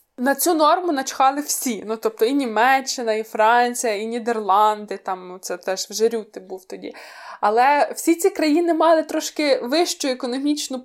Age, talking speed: 20-39, 155 wpm